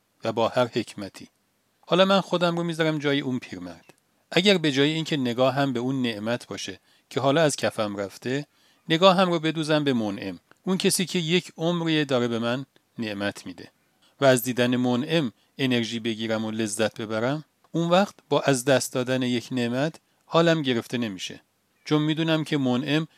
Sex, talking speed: male, 170 wpm